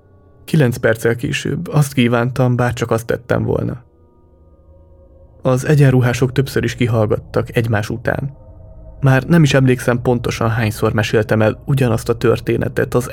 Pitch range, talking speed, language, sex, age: 110-130 Hz, 135 wpm, Hungarian, male, 20-39